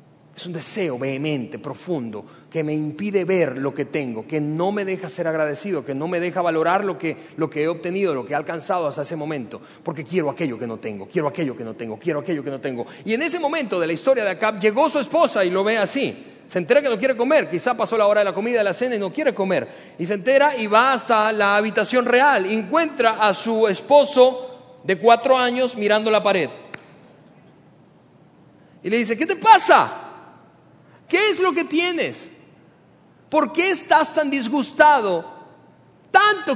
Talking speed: 200 wpm